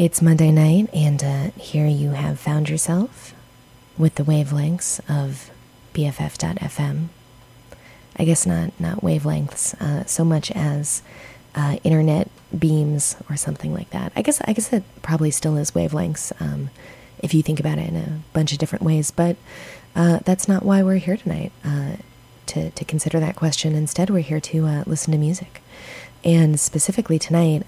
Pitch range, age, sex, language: 150-180 Hz, 20-39, female, English